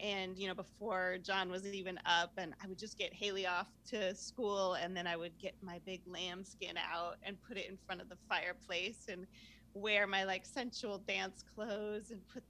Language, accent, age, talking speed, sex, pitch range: English, American, 30-49, 205 wpm, female, 180-215 Hz